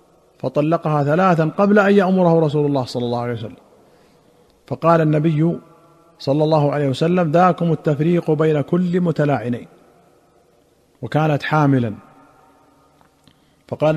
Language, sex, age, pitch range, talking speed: Arabic, male, 50-69, 140-160 Hz, 105 wpm